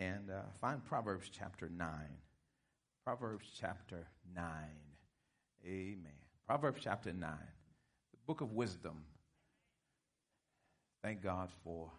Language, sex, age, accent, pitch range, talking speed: English, male, 50-69, American, 85-105 Hz, 100 wpm